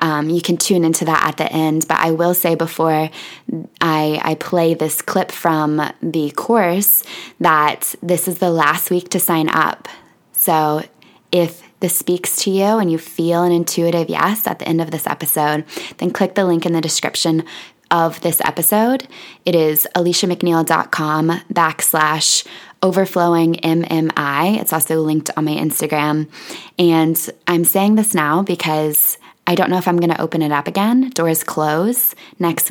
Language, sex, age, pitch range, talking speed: English, female, 20-39, 160-190 Hz, 165 wpm